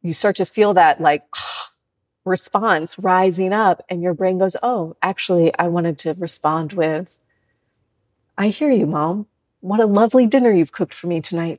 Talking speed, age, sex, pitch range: 170 wpm, 30-49, female, 155-190 Hz